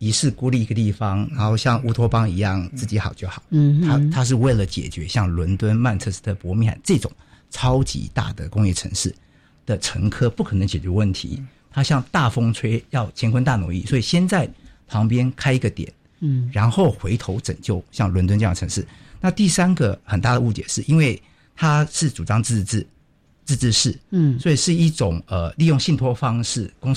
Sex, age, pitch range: male, 50-69, 105-145 Hz